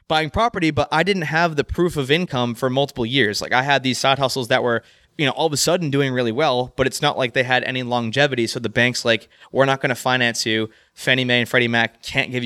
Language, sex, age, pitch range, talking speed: English, male, 20-39, 120-145 Hz, 260 wpm